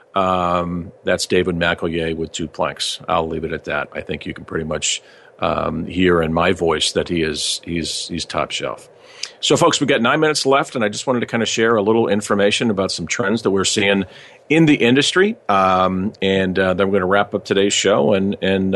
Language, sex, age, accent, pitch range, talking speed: English, male, 50-69, American, 95-125 Hz, 240 wpm